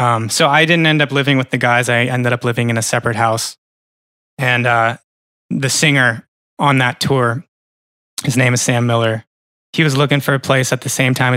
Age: 20-39